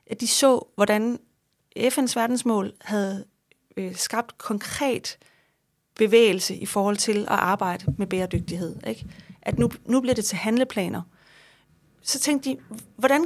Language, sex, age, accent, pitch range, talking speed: Danish, female, 30-49, native, 215-270 Hz, 125 wpm